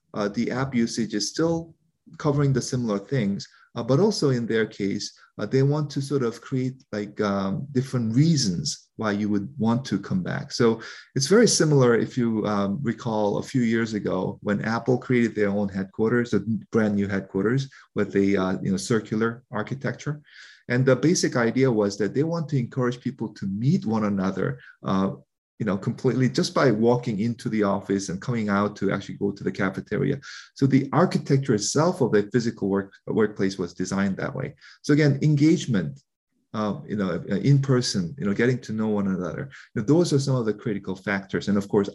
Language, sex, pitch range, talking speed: English, male, 100-125 Hz, 190 wpm